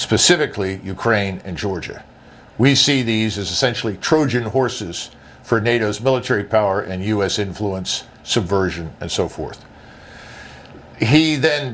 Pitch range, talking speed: 105-135 Hz, 125 wpm